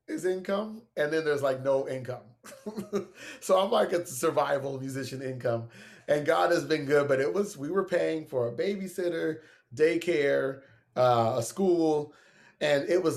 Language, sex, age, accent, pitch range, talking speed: English, male, 30-49, American, 125-155 Hz, 165 wpm